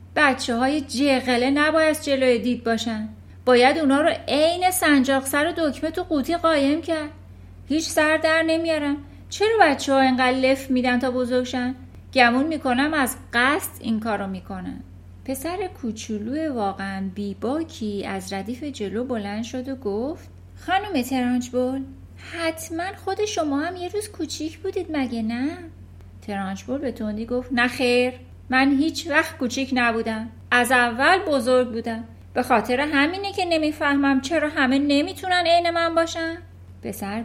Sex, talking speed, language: female, 140 wpm, Persian